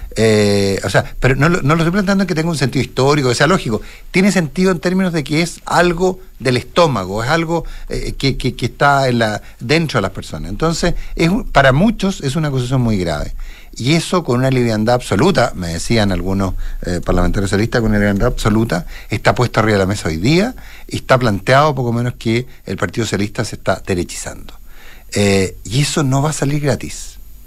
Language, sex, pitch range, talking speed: Spanish, male, 110-150 Hz, 210 wpm